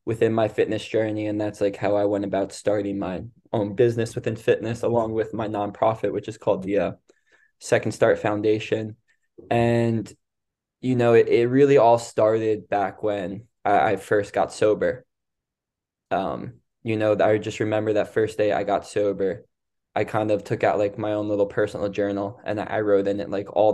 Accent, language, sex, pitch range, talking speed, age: American, English, male, 105-120 Hz, 185 wpm, 20-39